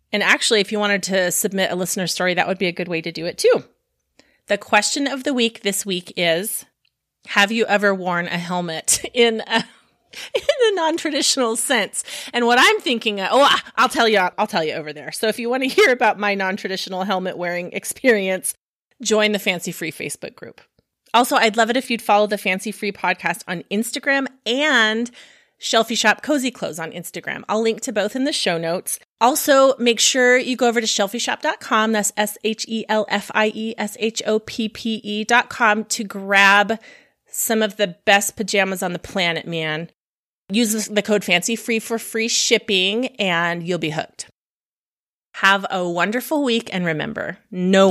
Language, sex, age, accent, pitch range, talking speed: English, female, 30-49, American, 185-235 Hz, 175 wpm